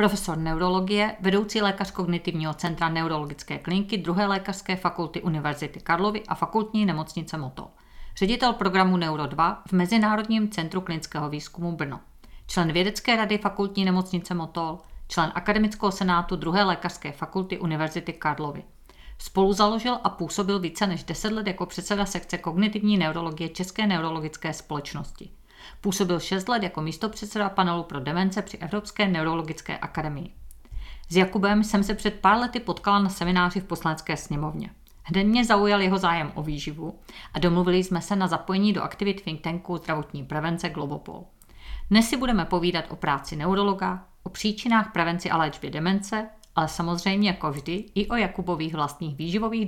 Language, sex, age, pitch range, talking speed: Czech, female, 50-69, 160-205 Hz, 150 wpm